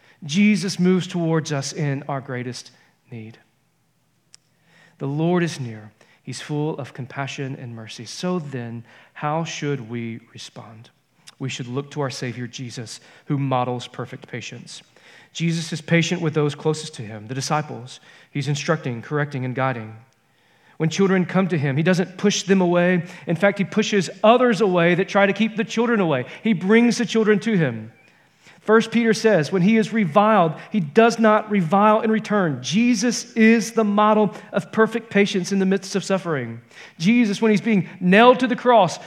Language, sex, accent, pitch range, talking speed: English, male, American, 135-215 Hz, 170 wpm